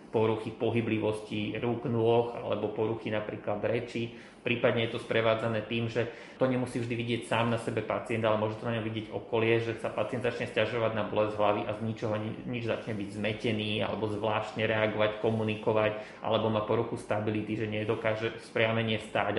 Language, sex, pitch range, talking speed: Slovak, male, 110-130 Hz, 175 wpm